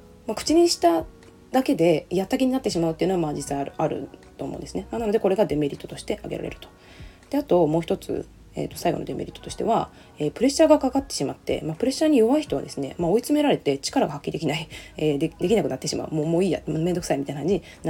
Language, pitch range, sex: Japanese, 160-265 Hz, female